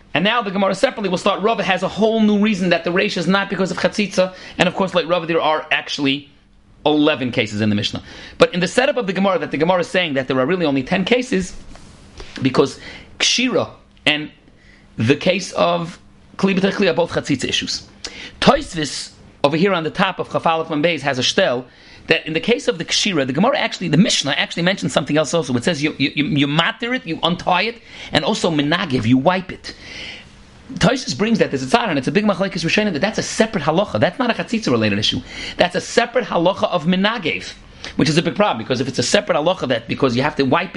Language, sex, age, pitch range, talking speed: English, male, 40-59, 150-200 Hz, 230 wpm